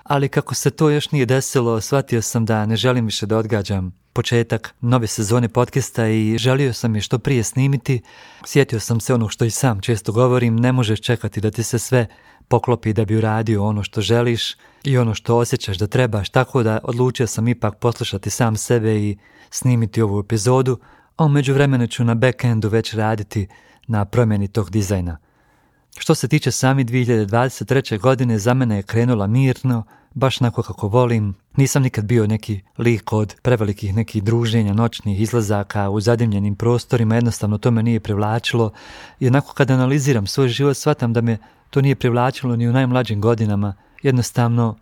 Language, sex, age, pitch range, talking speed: Croatian, male, 40-59, 110-125 Hz, 175 wpm